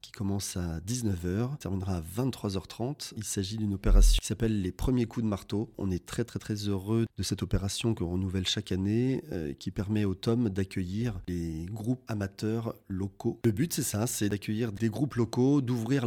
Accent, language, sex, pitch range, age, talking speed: French, French, male, 95-115 Hz, 30-49, 200 wpm